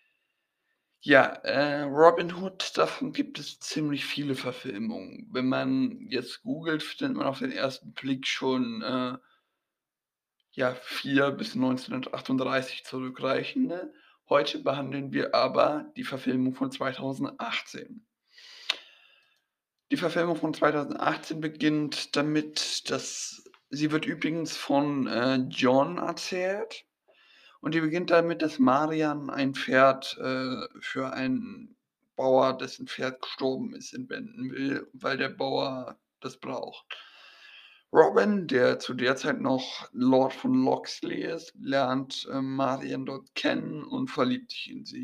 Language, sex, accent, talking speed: German, male, German, 125 wpm